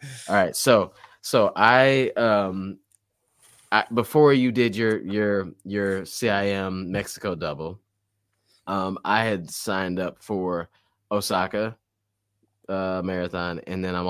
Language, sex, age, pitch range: English, male, 20-39, 85-105 Hz